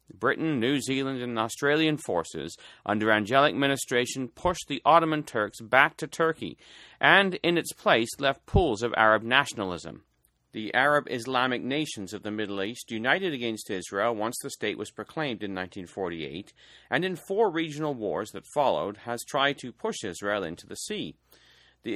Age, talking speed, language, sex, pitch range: 40-59, 160 wpm, English, male, 110-150 Hz